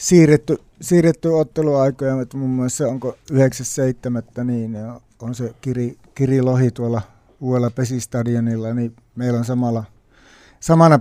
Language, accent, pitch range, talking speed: Finnish, native, 120-140 Hz, 115 wpm